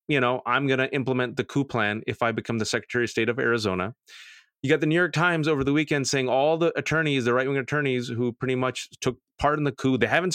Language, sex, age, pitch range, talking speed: English, male, 30-49, 120-155 Hz, 260 wpm